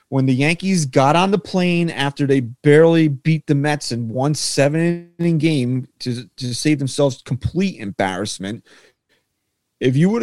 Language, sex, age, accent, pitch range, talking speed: English, male, 30-49, American, 130-175 Hz, 160 wpm